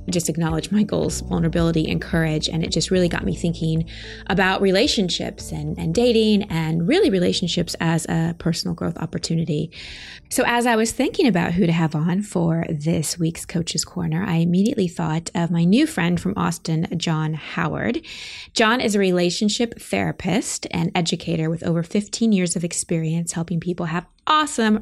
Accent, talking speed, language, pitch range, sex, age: American, 170 wpm, English, 165-195 Hz, female, 20-39